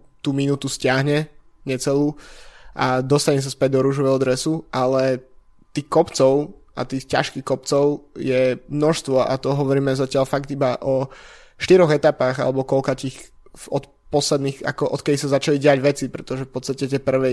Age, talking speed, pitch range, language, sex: 20-39, 155 wpm, 130-140 Hz, Slovak, male